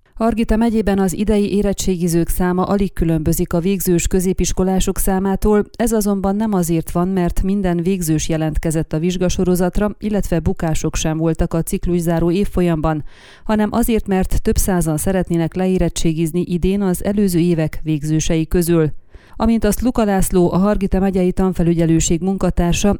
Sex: female